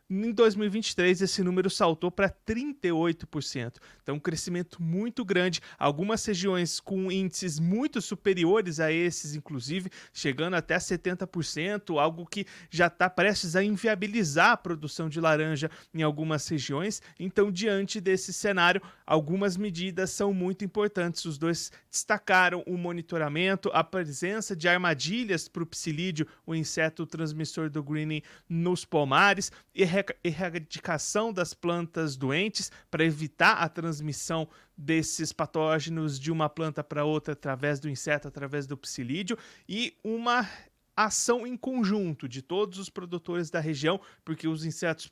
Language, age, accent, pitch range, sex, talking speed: Portuguese, 30-49, Brazilian, 160-190 Hz, male, 135 wpm